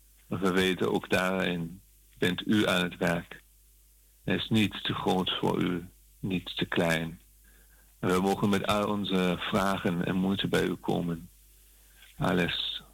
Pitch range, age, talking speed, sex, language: 85-100 Hz, 50-69, 145 wpm, male, Dutch